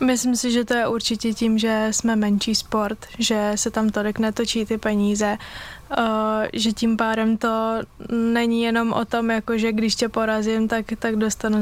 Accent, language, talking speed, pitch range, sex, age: native, Czech, 175 wpm, 215-230 Hz, female, 20-39